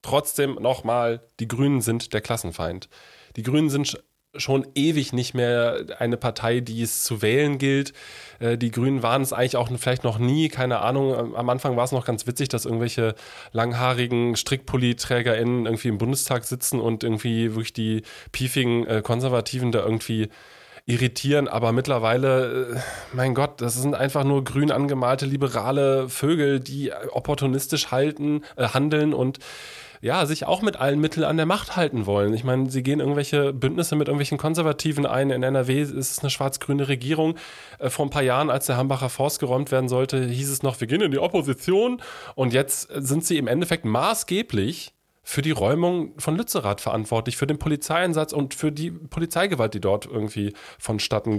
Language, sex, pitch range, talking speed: German, male, 120-145 Hz, 170 wpm